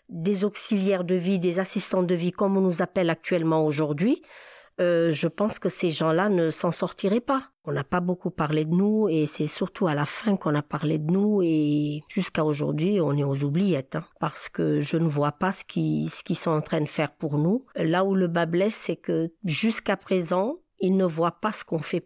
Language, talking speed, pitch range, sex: French, 225 wpm, 165-205 Hz, female